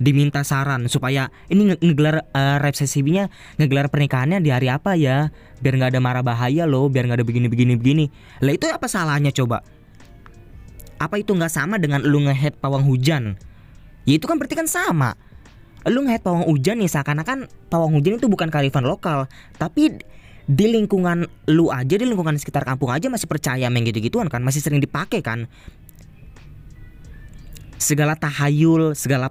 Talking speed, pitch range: 165 wpm, 120-155 Hz